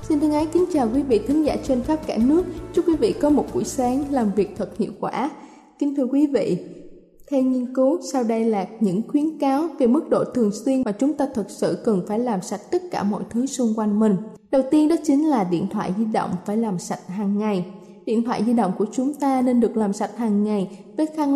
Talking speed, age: 245 wpm, 10-29